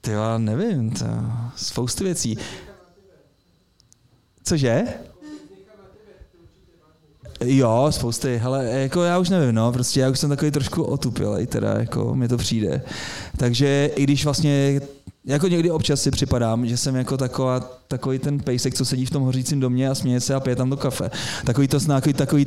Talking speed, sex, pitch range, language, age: 165 wpm, male, 120-140 Hz, Czech, 20-39